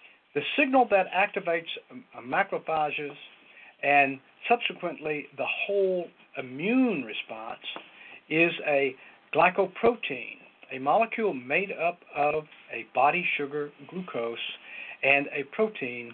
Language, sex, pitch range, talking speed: English, male, 140-195 Hz, 95 wpm